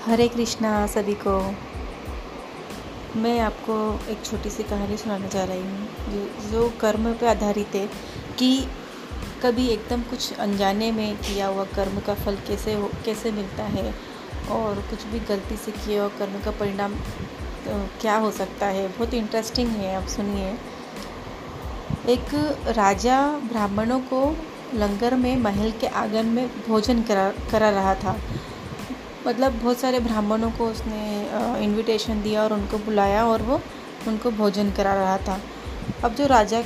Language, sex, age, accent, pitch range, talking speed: Hindi, female, 30-49, native, 205-245 Hz, 150 wpm